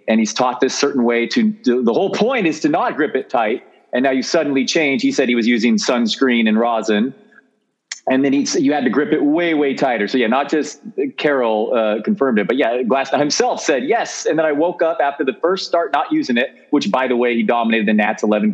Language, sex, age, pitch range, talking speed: English, male, 30-49, 115-160 Hz, 245 wpm